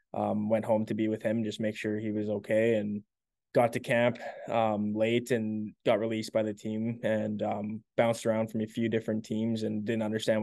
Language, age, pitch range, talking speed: English, 20-39, 105-115 Hz, 215 wpm